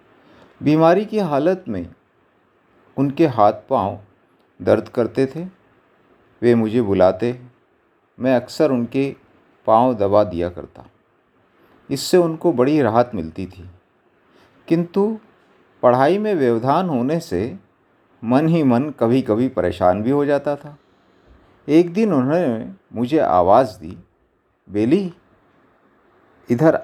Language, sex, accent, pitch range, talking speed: Hindi, male, native, 105-140 Hz, 110 wpm